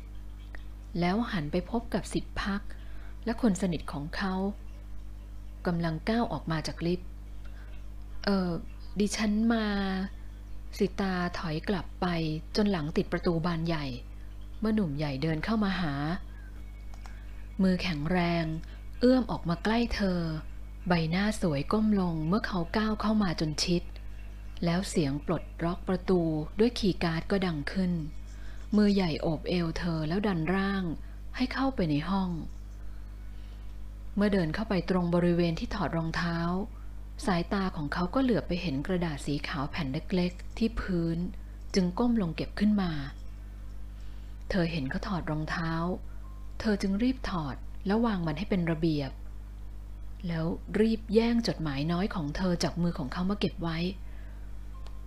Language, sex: Thai, female